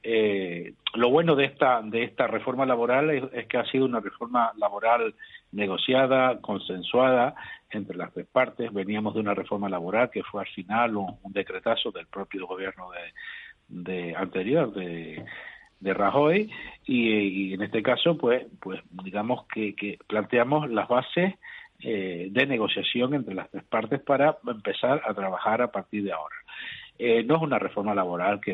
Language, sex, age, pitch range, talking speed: Spanish, male, 50-69, 100-125 Hz, 165 wpm